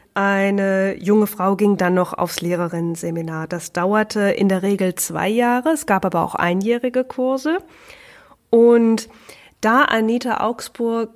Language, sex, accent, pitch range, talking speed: German, female, German, 190-230 Hz, 135 wpm